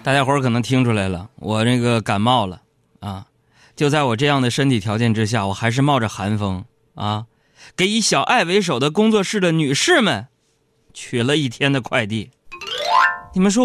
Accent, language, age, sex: native, Chinese, 20-39, male